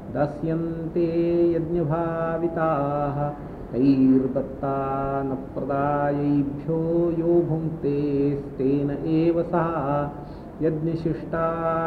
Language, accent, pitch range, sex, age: English, Indian, 145-165 Hz, male, 50-69